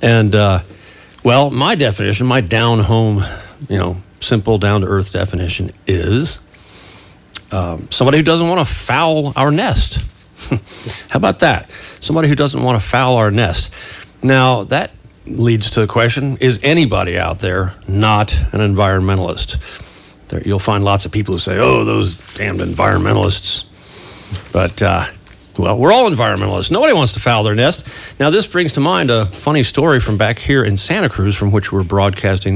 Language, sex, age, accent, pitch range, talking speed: English, male, 50-69, American, 100-130 Hz, 160 wpm